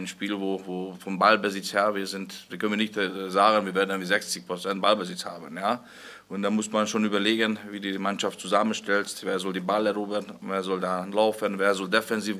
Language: German